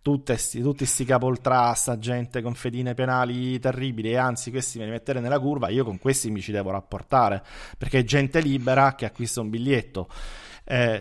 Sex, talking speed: male, 175 wpm